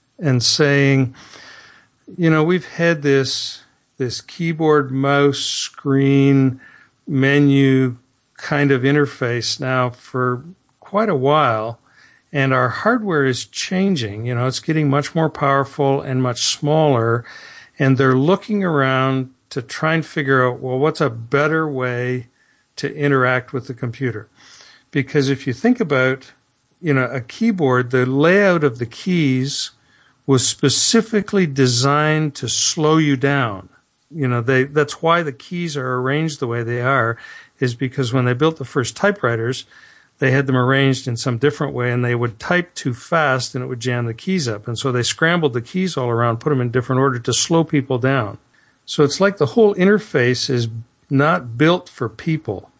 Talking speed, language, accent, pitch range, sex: 165 wpm, English, American, 125-150 Hz, male